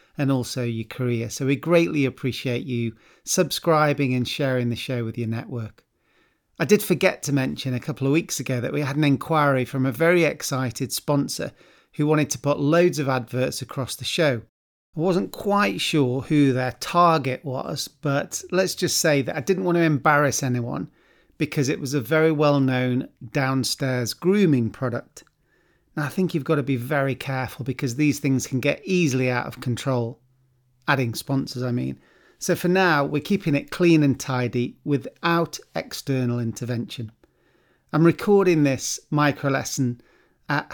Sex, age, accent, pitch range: male, 40-59, British, 125-155 Hz